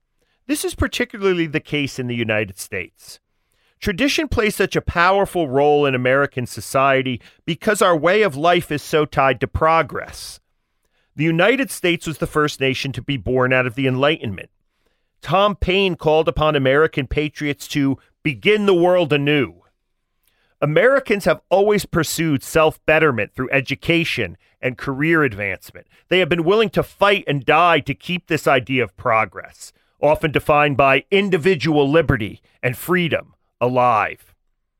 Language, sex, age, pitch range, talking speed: English, male, 40-59, 125-180 Hz, 145 wpm